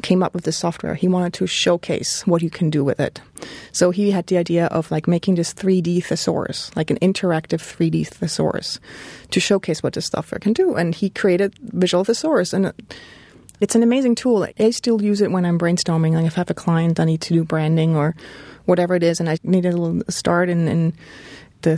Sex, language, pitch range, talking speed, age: female, English, 160-190 Hz, 220 wpm, 30-49